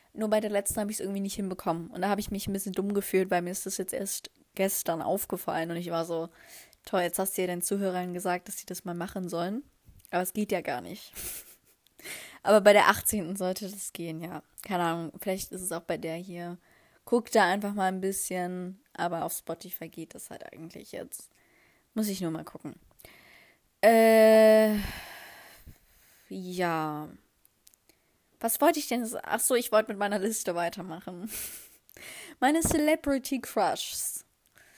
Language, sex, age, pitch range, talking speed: German, female, 20-39, 180-220 Hz, 180 wpm